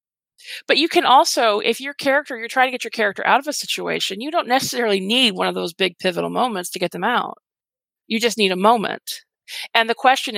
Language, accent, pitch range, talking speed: English, American, 195-260 Hz, 225 wpm